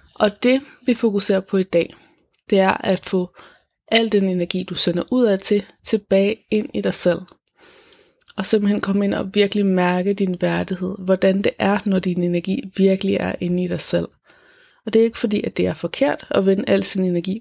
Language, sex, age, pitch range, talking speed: Danish, female, 20-39, 185-210 Hz, 205 wpm